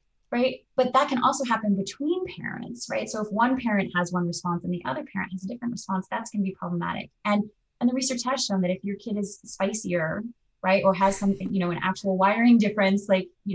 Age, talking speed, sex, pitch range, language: 20-39, 235 wpm, female, 175-205 Hz, English